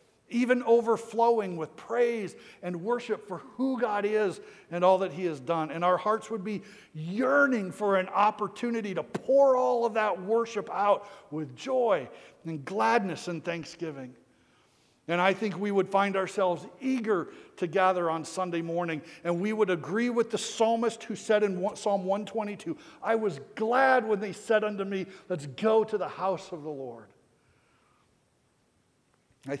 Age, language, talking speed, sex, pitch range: 60-79, English, 160 wpm, male, 165-210 Hz